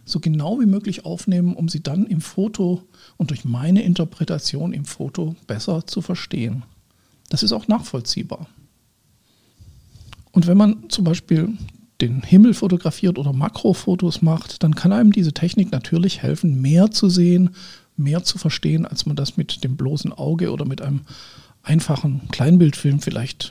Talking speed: 155 wpm